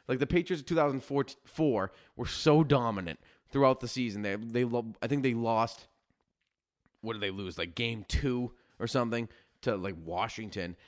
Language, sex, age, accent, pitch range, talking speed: English, male, 20-39, American, 105-140 Hz, 175 wpm